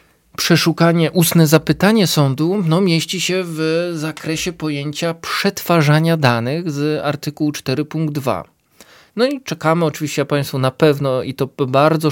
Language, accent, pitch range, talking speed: Polish, native, 135-160 Hz, 125 wpm